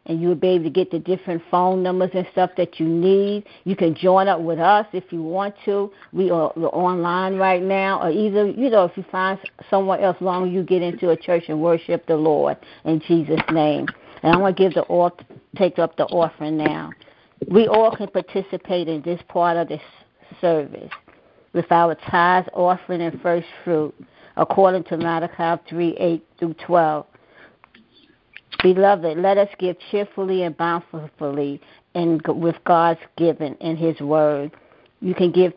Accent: American